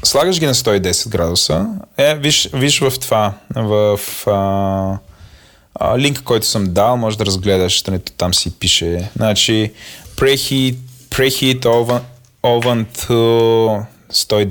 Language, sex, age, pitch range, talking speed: Bulgarian, male, 20-39, 105-135 Hz, 105 wpm